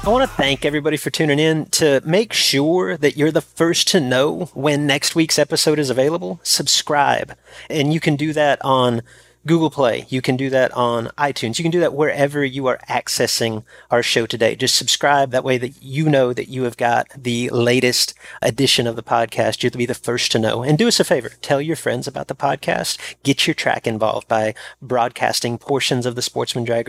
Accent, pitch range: American, 115-150 Hz